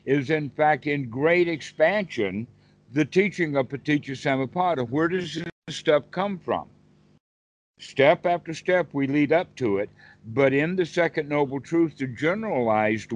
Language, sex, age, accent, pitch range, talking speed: English, male, 60-79, American, 125-155 Hz, 150 wpm